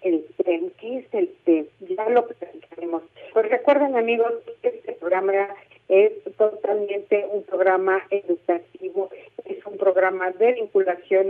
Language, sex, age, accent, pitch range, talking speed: Spanish, female, 50-69, Mexican, 180-225 Hz, 125 wpm